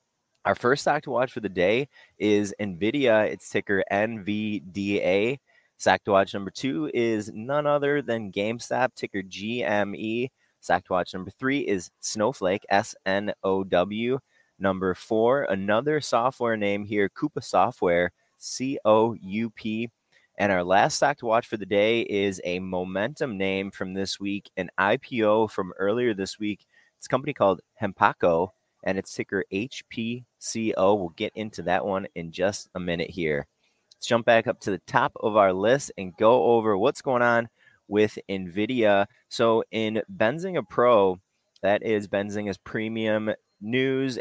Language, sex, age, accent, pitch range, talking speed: English, male, 20-39, American, 95-115 Hz, 160 wpm